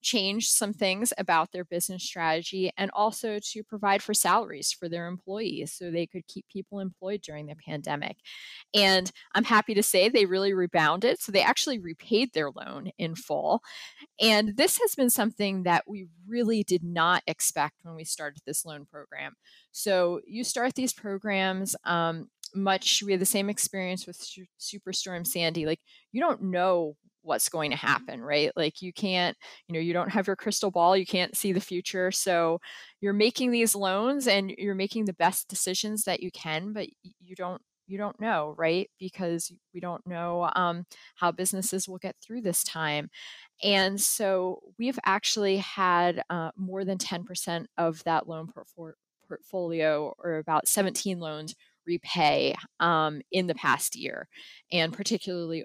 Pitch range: 170-205 Hz